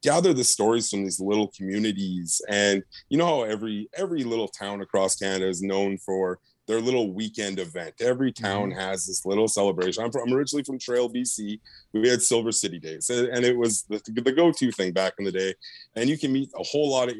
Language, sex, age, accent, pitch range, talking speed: English, male, 30-49, American, 100-125 Hz, 215 wpm